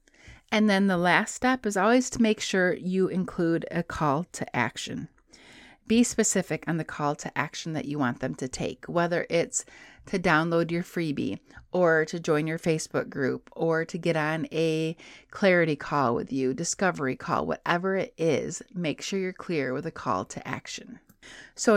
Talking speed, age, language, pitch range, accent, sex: 180 wpm, 30-49, English, 160-205 Hz, American, female